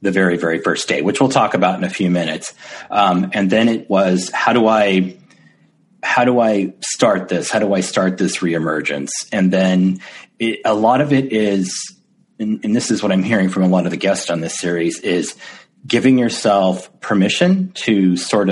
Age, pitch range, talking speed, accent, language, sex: 40-59, 90-125 Hz, 200 wpm, American, English, male